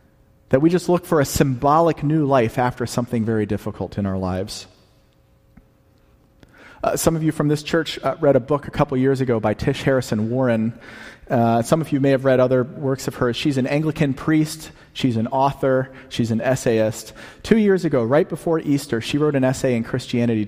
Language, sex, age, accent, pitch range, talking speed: English, male, 40-59, American, 105-145 Hz, 200 wpm